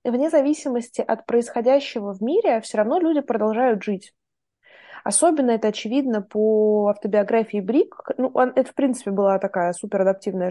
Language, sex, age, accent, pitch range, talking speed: Russian, female, 20-39, native, 200-260 Hz, 135 wpm